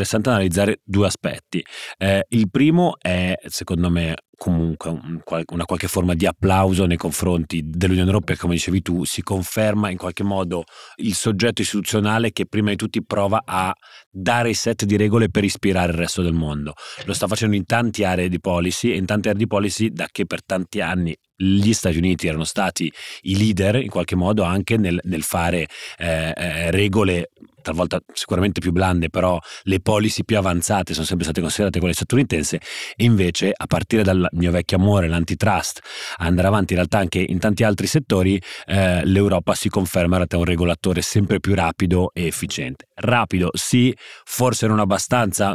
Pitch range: 90-105 Hz